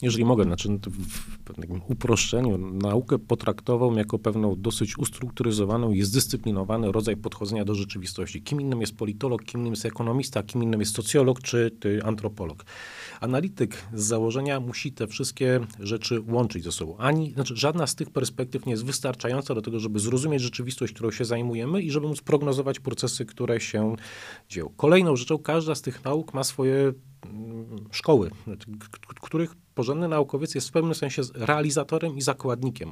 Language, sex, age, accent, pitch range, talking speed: Polish, male, 40-59, native, 110-145 Hz, 155 wpm